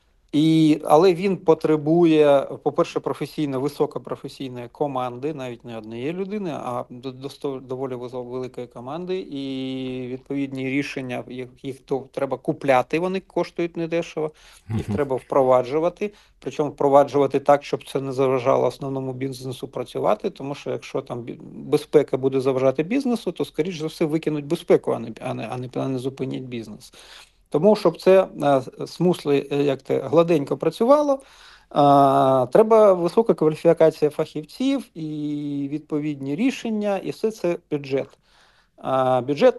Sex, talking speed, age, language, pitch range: male, 130 wpm, 40-59, Ukrainian, 135-175 Hz